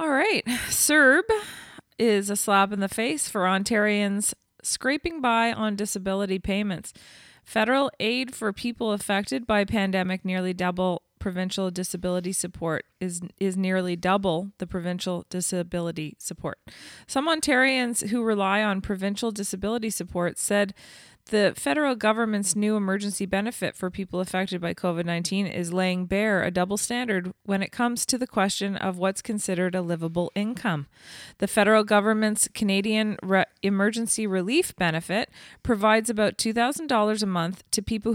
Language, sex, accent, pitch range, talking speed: English, female, American, 180-215 Hz, 140 wpm